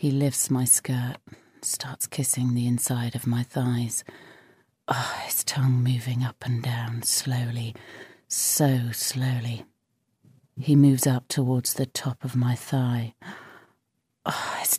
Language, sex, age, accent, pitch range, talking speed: English, female, 40-59, British, 125-140 Hz, 120 wpm